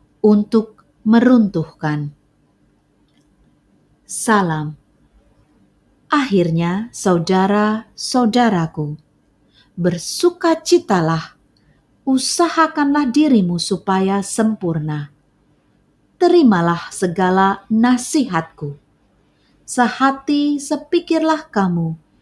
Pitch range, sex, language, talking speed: 175-270 Hz, female, Indonesian, 45 wpm